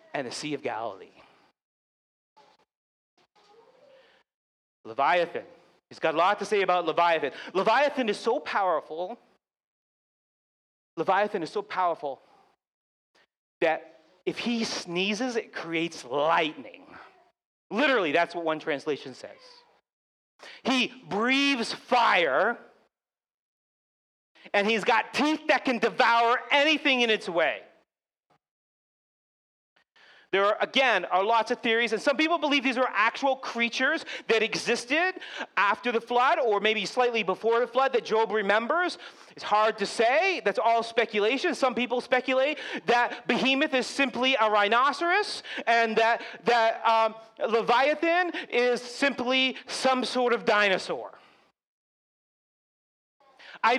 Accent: American